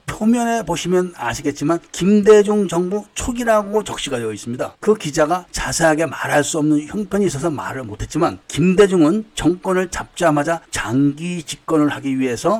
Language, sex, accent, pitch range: Korean, male, native, 135-190 Hz